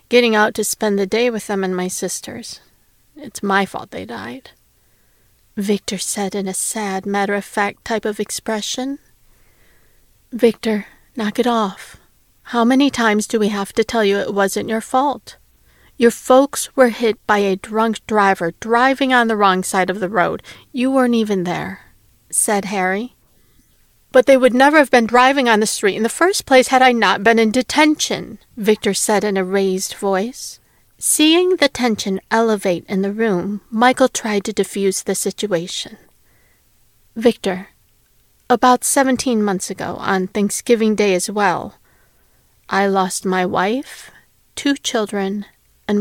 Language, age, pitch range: English, 40-59, 195-240 Hz